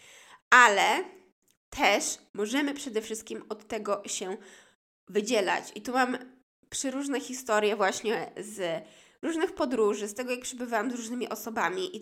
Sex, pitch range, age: female, 205-260 Hz, 20-39